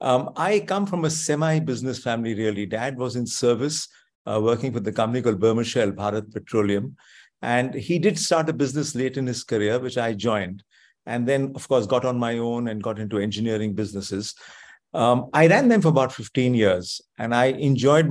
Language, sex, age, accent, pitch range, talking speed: English, male, 50-69, Indian, 110-135 Hz, 190 wpm